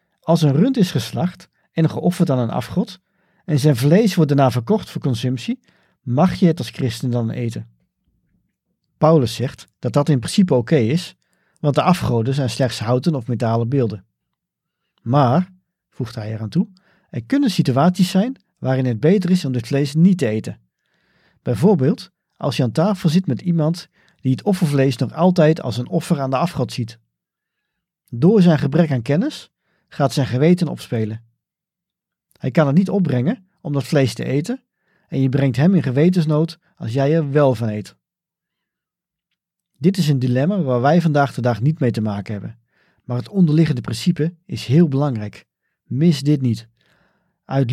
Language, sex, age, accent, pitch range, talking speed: Dutch, male, 50-69, Dutch, 125-175 Hz, 175 wpm